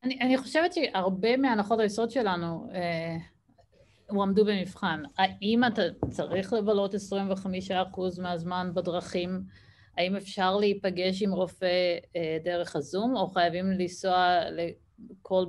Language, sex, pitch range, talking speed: Hebrew, female, 170-200 Hz, 110 wpm